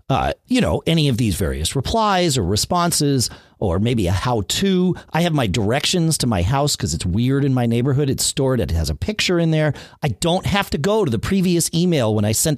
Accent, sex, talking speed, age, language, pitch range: American, male, 230 wpm, 40-59, English, 95-160 Hz